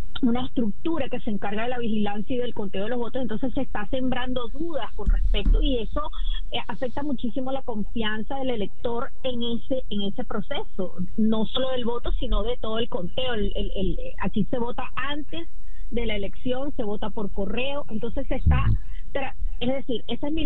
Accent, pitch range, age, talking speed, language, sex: American, 225-285 Hz, 30-49, 195 wpm, Spanish, female